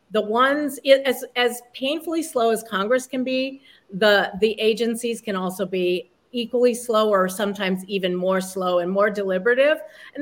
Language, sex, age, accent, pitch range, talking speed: English, female, 50-69, American, 195-245 Hz, 160 wpm